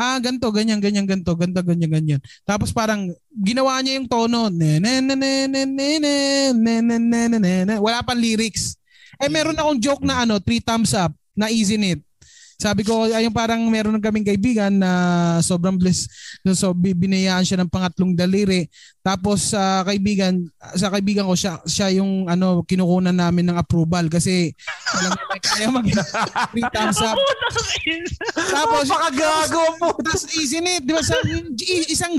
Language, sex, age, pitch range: English, male, 20-39, 190-255 Hz